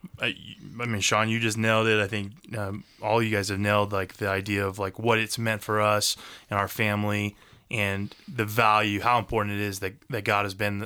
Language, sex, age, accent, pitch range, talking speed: English, male, 20-39, American, 105-125 Hz, 220 wpm